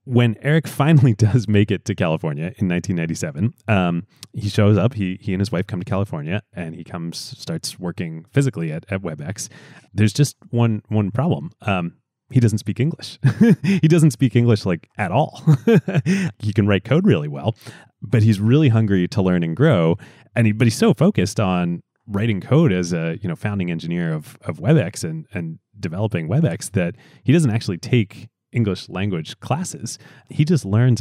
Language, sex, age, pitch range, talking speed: English, male, 30-49, 90-130 Hz, 185 wpm